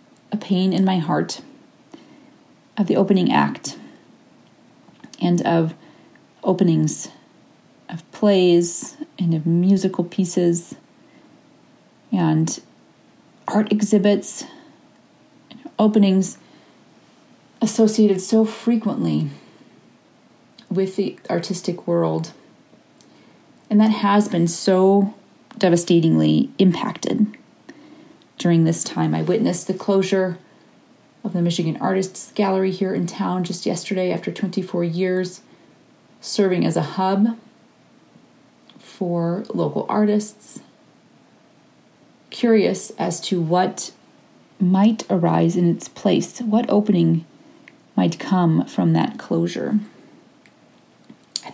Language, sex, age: English, female, 30-49